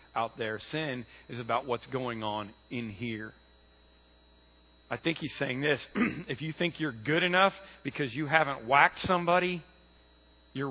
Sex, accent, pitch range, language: male, American, 130-210 Hz, English